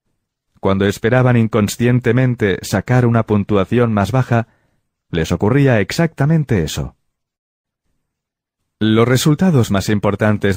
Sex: male